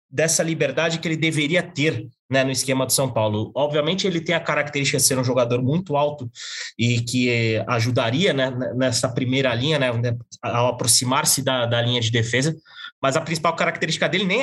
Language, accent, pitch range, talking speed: Portuguese, Brazilian, 130-180 Hz, 185 wpm